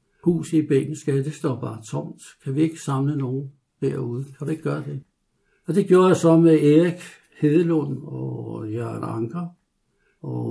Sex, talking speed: male, 170 wpm